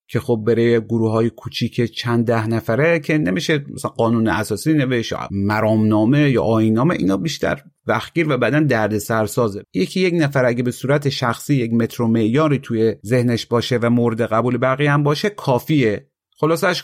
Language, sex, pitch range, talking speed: Persian, male, 110-145 Hz, 170 wpm